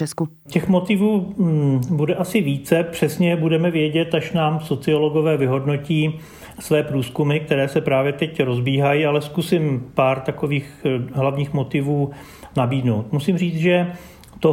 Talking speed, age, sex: 125 wpm, 40-59, male